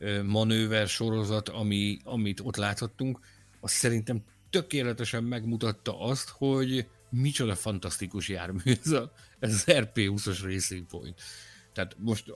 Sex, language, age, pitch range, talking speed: male, Hungarian, 50-69, 100-125 Hz, 100 wpm